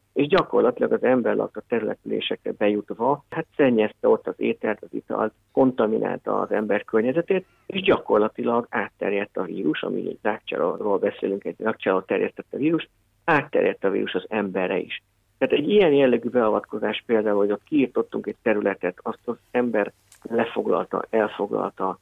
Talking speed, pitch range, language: 145 wpm, 110-145 Hz, Hungarian